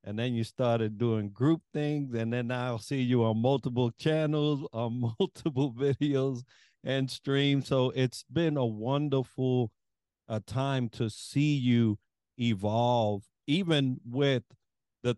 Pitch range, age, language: 115-140 Hz, 50-69, English